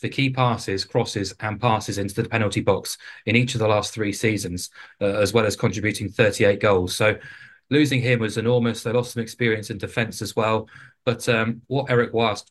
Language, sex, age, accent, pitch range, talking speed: English, male, 20-39, British, 100-125 Hz, 200 wpm